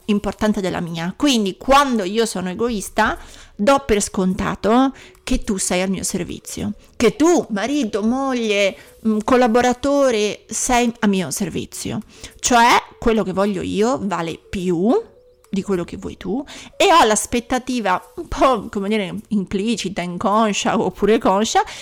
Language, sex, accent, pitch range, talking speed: Italian, female, native, 190-235 Hz, 135 wpm